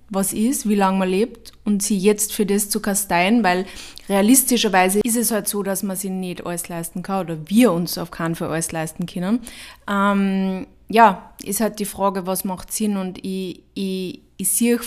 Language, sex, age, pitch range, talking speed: German, female, 20-39, 180-205 Hz, 200 wpm